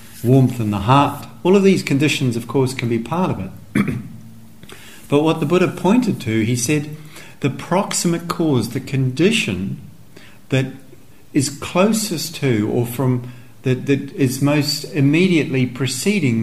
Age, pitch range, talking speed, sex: 50-69, 110-150 Hz, 145 wpm, male